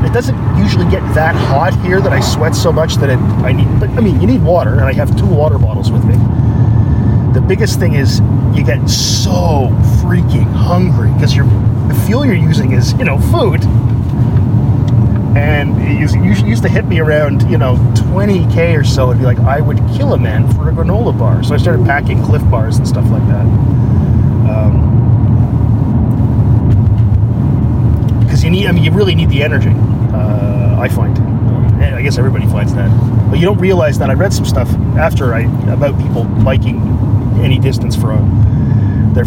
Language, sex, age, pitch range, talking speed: English, male, 30-49, 110-125 Hz, 180 wpm